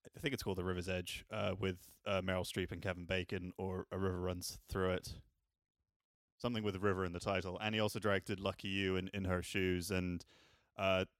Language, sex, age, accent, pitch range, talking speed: English, male, 20-39, British, 95-105 Hz, 215 wpm